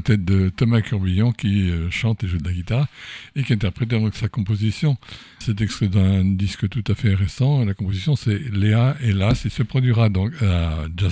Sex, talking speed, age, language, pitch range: male, 195 wpm, 60-79, French, 95-120 Hz